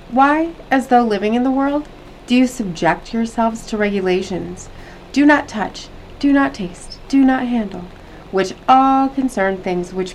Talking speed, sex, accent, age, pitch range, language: 160 wpm, female, American, 30-49, 185-265 Hz, English